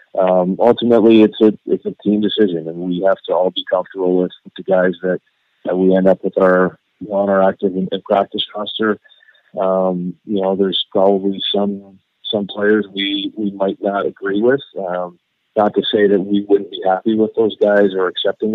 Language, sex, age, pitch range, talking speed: English, male, 40-59, 90-100 Hz, 190 wpm